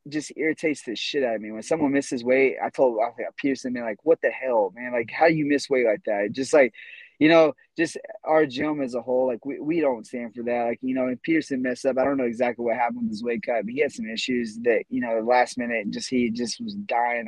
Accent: American